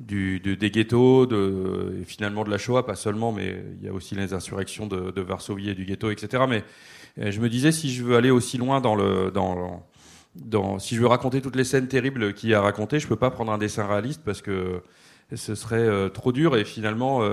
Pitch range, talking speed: 100-120 Hz, 230 wpm